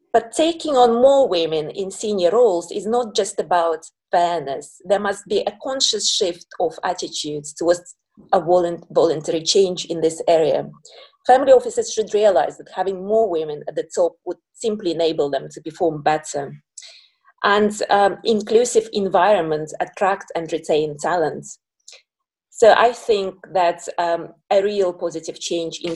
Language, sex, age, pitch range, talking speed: English, female, 30-49, 165-230 Hz, 150 wpm